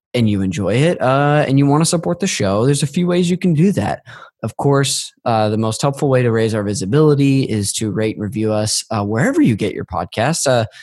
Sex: male